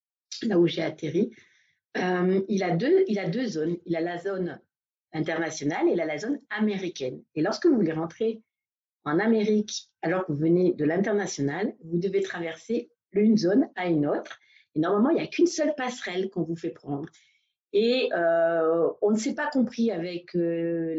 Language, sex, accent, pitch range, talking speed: French, female, French, 165-210 Hz, 185 wpm